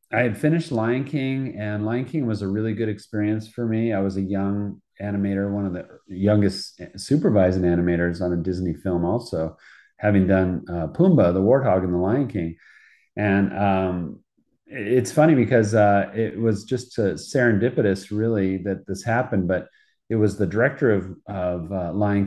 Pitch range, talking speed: 90-110 Hz, 180 wpm